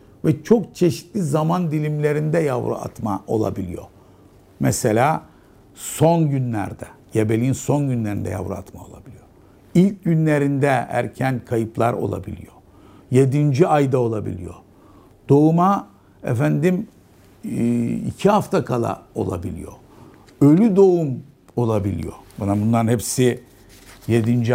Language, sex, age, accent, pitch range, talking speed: Turkish, male, 60-79, native, 100-145 Hz, 95 wpm